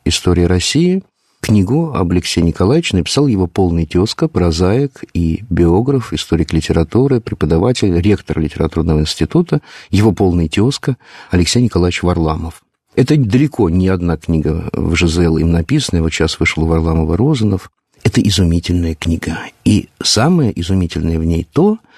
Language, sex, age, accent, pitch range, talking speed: Russian, male, 50-69, native, 85-135 Hz, 135 wpm